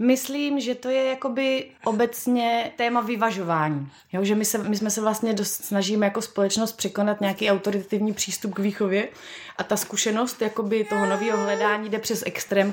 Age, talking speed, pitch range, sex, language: 30-49, 160 wpm, 180-220 Hz, female, Czech